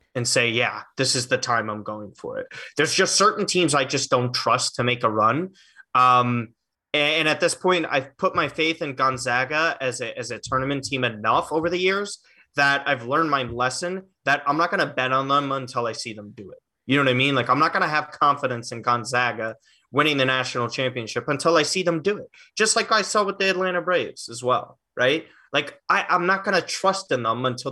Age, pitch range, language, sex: 20-39, 120-160 Hz, English, male